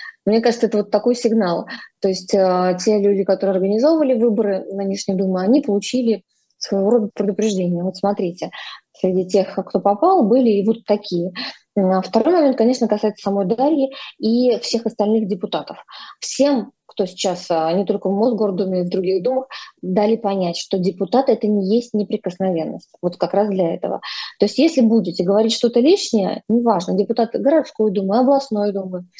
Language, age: Russian, 20-39